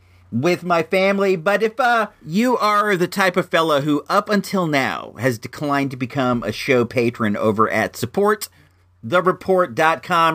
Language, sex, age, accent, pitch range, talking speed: English, male, 40-59, American, 115-185 Hz, 150 wpm